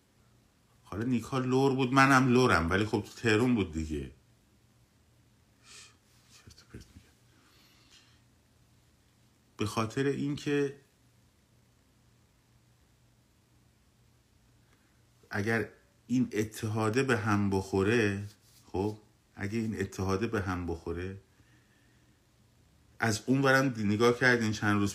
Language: Persian